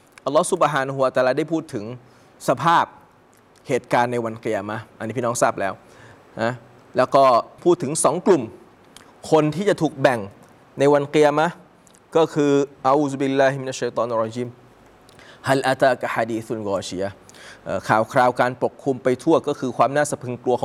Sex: male